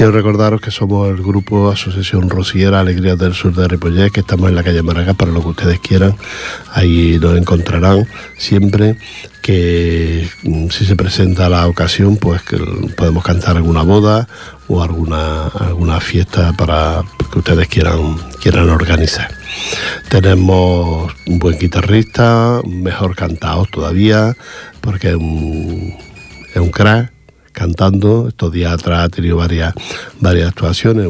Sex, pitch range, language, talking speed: male, 85-100 Hz, Portuguese, 140 wpm